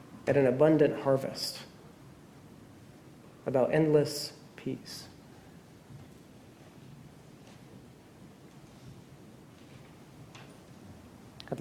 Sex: male